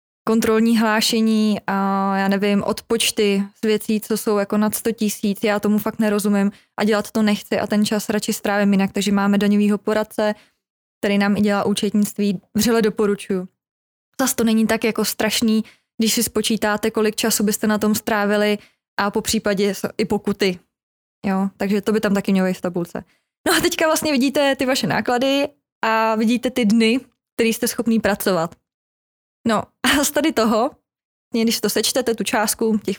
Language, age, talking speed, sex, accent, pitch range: Czech, 20-39, 170 wpm, female, native, 205-230 Hz